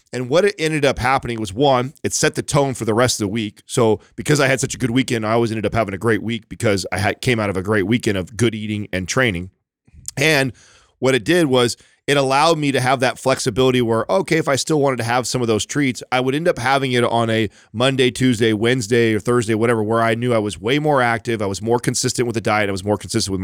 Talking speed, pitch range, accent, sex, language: 270 wpm, 110-135 Hz, American, male, English